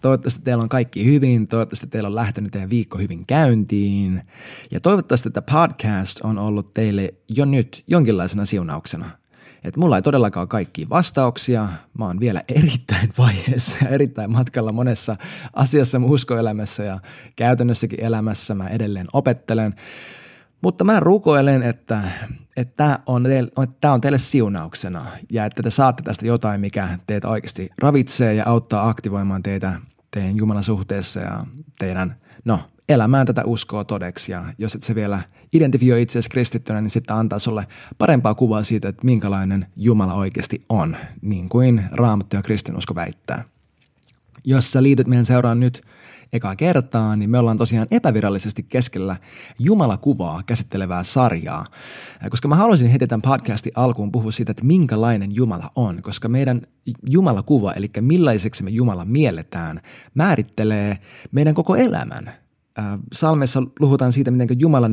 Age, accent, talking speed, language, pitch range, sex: 20-39, native, 145 wpm, Finnish, 105-130 Hz, male